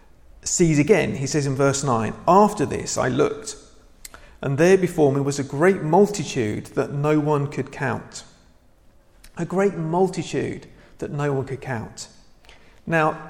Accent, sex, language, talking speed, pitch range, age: British, male, English, 150 wpm, 135-170 Hz, 40-59